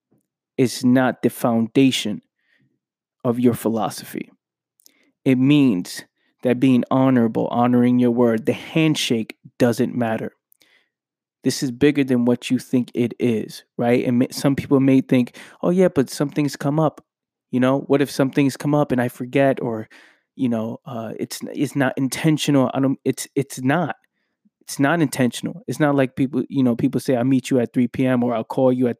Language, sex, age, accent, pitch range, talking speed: English, male, 20-39, American, 120-135 Hz, 180 wpm